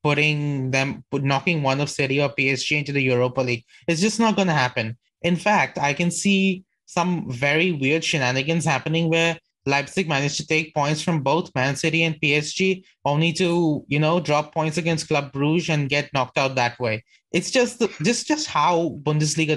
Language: English